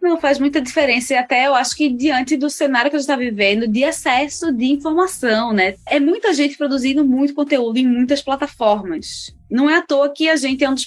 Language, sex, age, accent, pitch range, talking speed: Portuguese, female, 20-39, Brazilian, 210-285 Hz, 225 wpm